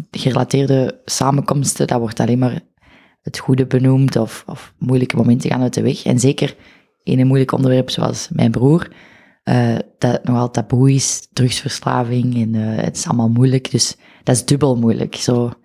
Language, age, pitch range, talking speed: Dutch, 20-39, 120-140 Hz, 165 wpm